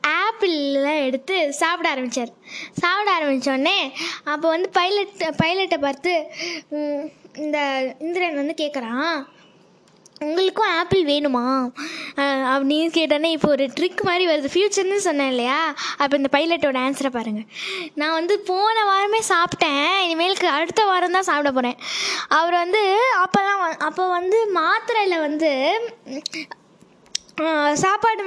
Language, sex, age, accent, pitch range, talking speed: Tamil, female, 20-39, native, 295-385 Hz, 110 wpm